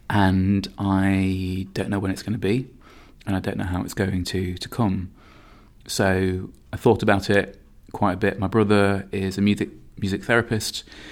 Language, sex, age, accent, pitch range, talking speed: English, male, 20-39, British, 90-100 Hz, 185 wpm